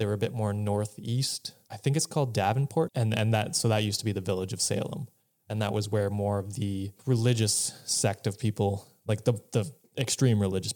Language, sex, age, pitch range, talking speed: English, male, 20-39, 105-125 Hz, 220 wpm